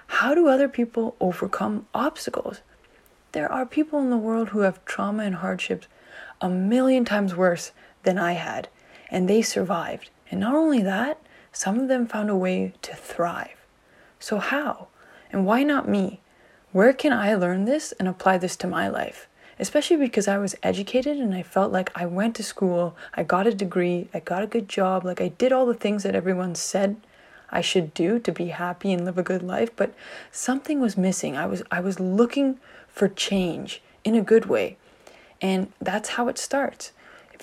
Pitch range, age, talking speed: 185-240 Hz, 20-39, 190 wpm